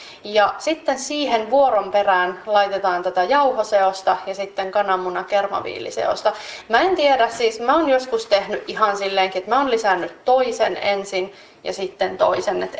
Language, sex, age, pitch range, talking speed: Finnish, female, 30-49, 195-230 Hz, 150 wpm